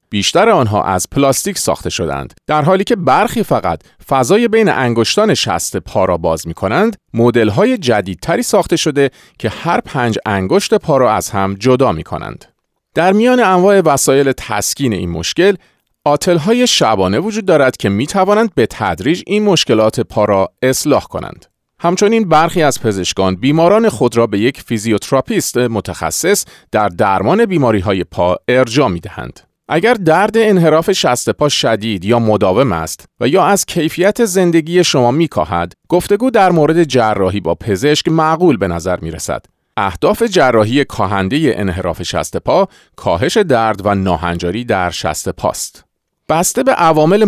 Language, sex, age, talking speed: Persian, male, 40-59, 150 wpm